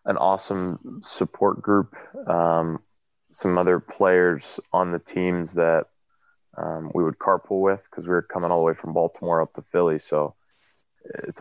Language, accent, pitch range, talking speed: English, American, 80-95 Hz, 165 wpm